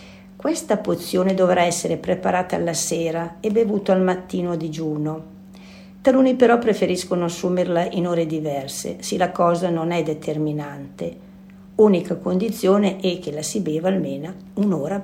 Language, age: Italian, 50-69